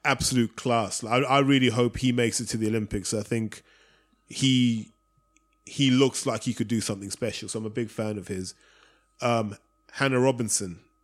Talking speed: 180 wpm